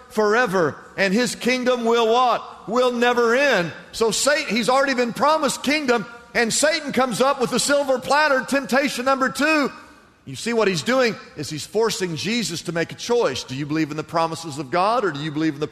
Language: English